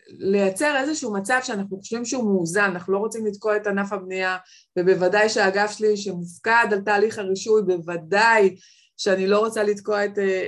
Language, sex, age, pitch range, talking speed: Hebrew, female, 20-39, 190-230 Hz, 160 wpm